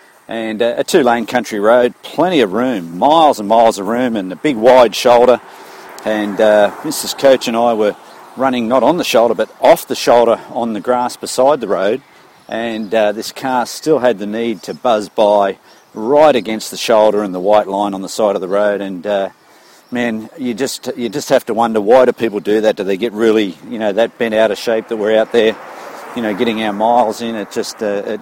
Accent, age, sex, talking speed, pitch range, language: Australian, 50-69, male, 220 wpm, 100-120 Hz, English